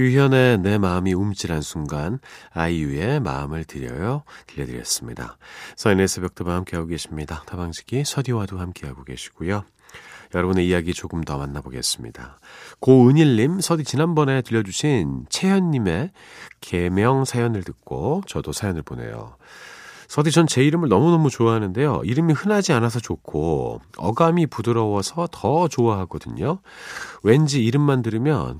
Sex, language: male, Korean